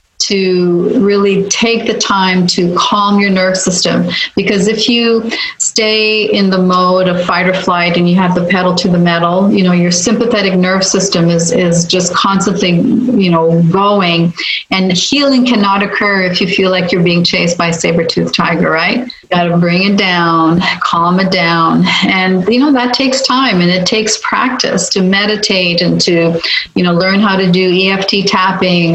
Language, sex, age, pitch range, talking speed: English, female, 40-59, 175-205 Hz, 185 wpm